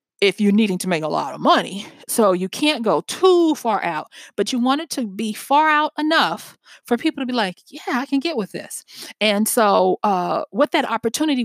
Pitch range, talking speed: 195-275 Hz, 220 wpm